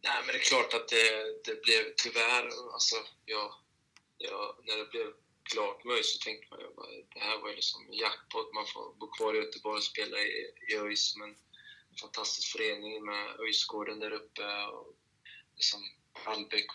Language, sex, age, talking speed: Swedish, male, 20-39, 180 wpm